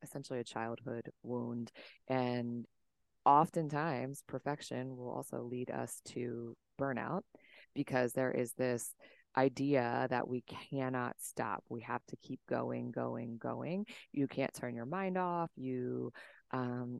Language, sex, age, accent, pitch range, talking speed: English, female, 20-39, American, 120-135 Hz, 130 wpm